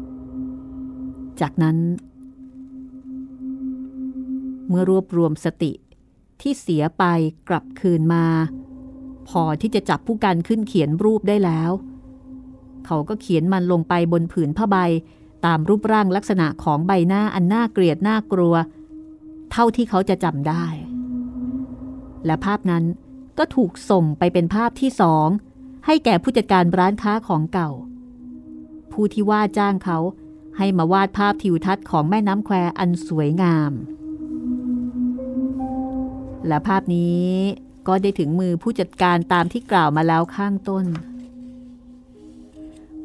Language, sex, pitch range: Thai, female, 170-250 Hz